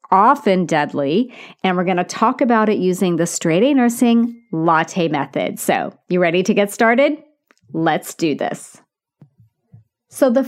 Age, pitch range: 40-59, 175-240 Hz